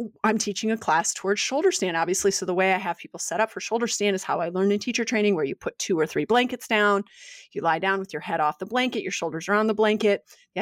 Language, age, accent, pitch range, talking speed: English, 30-49, American, 185-235 Hz, 285 wpm